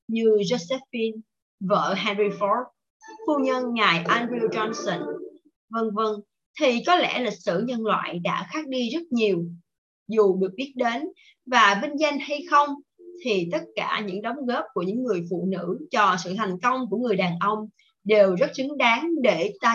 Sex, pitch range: female, 190-285 Hz